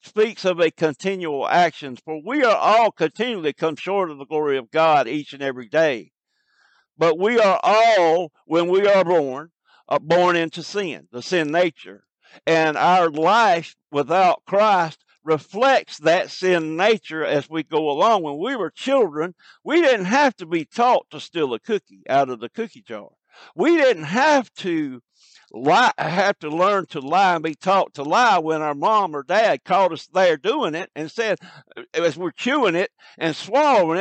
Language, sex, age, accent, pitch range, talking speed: English, male, 60-79, American, 150-220 Hz, 180 wpm